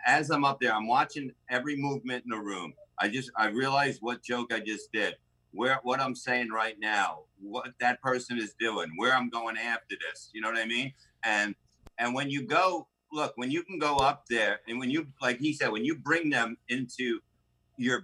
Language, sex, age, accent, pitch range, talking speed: English, male, 50-69, American, 110-130 Hz, 215 wpm